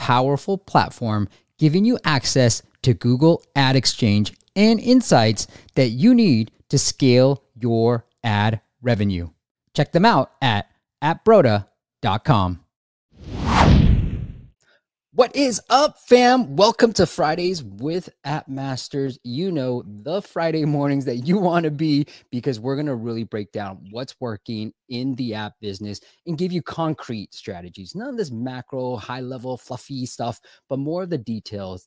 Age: 30-49